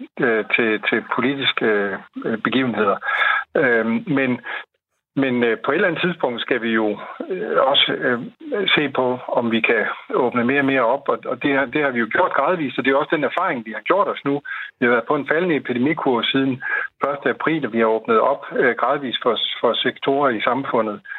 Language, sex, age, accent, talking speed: Danish, male, 60-79, native, 185 wpm